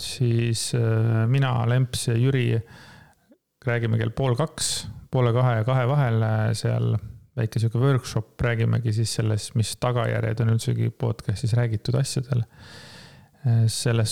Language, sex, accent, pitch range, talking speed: English, male, Finnish, 115-130 Hz, 125 wpm